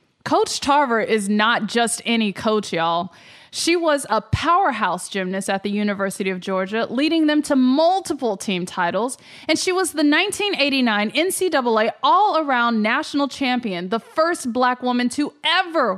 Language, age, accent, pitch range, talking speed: English, 20-39, American, 215-305 Hz, 145 wpm